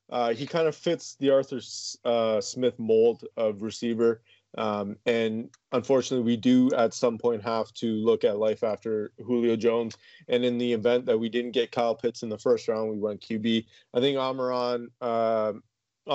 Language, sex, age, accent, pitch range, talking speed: English, male, 20-39, American, 115-140 Hz, 185 wpm